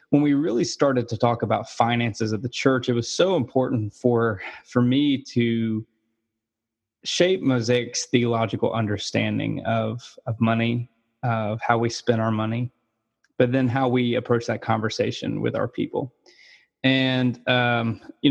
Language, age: English, 20-39